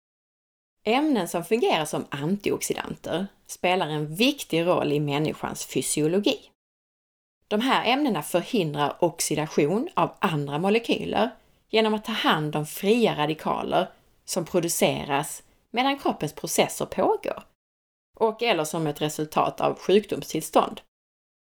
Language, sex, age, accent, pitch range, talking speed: Swedish, female, 30-49, native, 160-225 Hz, 110 wpm